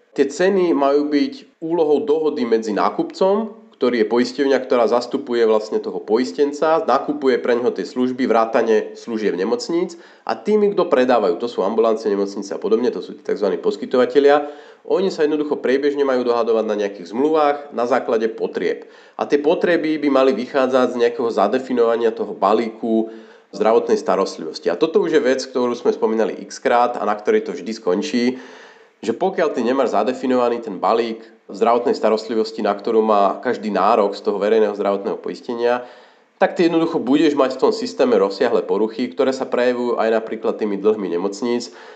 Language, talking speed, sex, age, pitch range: Slovak, 165 wpm, male, 40-59, 115-190 Hz